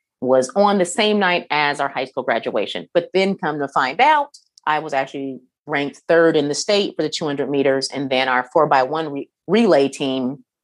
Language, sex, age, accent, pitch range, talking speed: English, female, 30-49, American, 140-180 Hz, 210 wpm